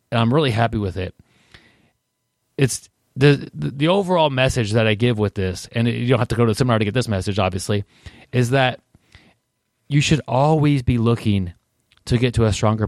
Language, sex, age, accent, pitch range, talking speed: English, male, 30-49, American, 110-135 Hz, 195 wpm